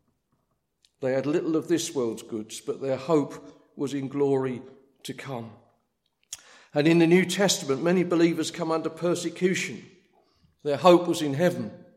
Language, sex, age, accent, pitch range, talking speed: English, male, 50-69, British, 135-165 Hz, 150 wpm